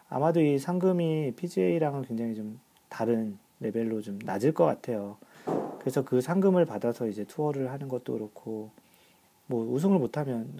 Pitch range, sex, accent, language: 110-150 Hz, male, native, Korean